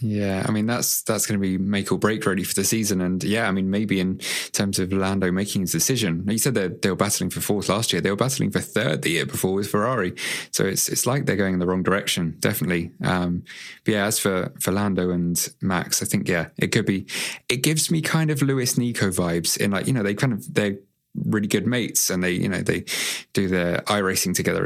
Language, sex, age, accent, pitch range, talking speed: English, male, 20-39, British, 90-110 Hz, 245 wpm